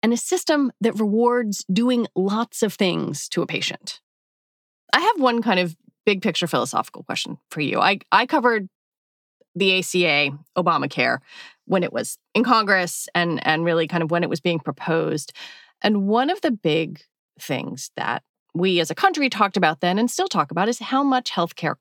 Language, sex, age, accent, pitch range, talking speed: English, female, 30-49, American, 165-230 Hz, 180 wpm